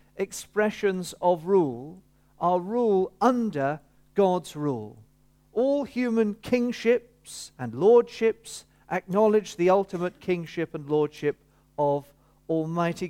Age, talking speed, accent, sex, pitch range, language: 50-69, 95 wpm, British, male, 150-215 Hz, English